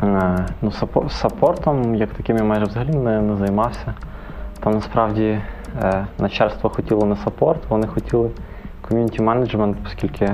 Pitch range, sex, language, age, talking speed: 95-105 Hz, male, Ukrainian, 20-39, 115 wpm